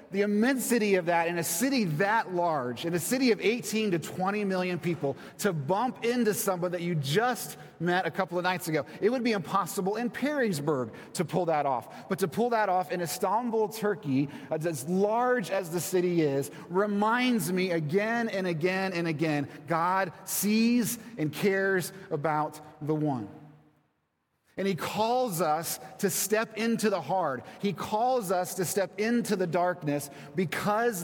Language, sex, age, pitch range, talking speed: English, male, 30-49, 165-210 Hz, 170 wpm